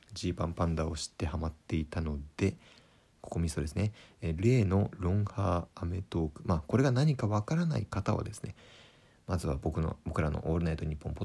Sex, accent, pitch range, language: male, native, 85-125 Hz, Japanese